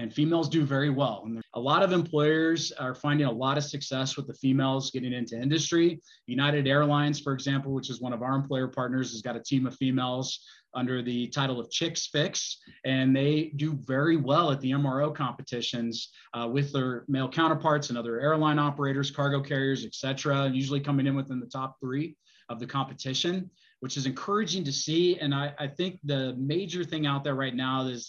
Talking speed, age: 200 wpm, 20-39